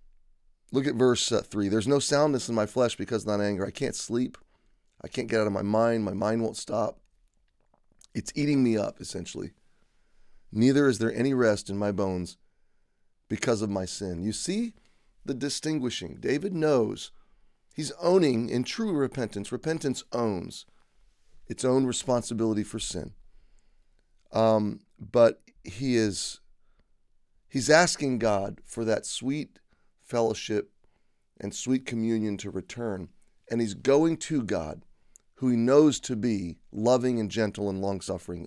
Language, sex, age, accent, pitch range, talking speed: English, male, 30-49, American, 105-130 Hz, 150 wpm